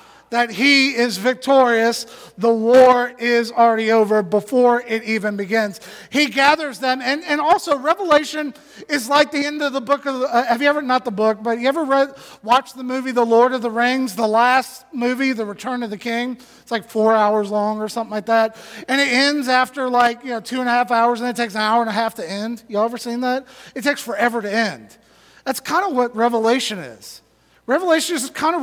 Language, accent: English, American